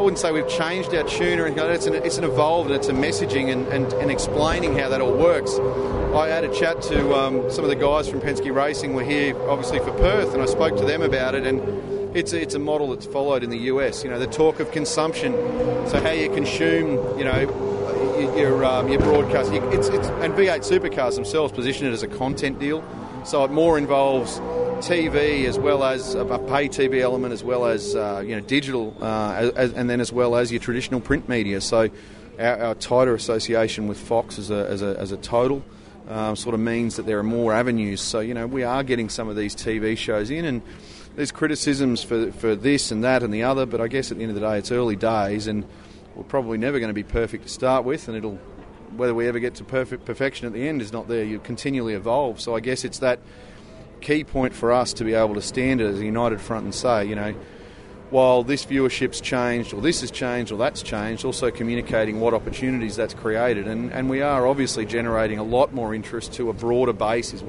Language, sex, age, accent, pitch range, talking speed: English, male, 30-49, Australian, 110-130 Hz, 230 wpm